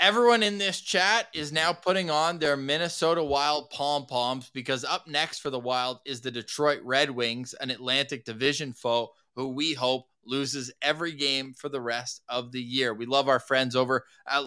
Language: English